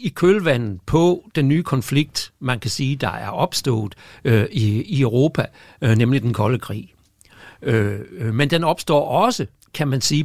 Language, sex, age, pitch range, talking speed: Danish, male, 60-79, 115-160 Hz, 170 wpm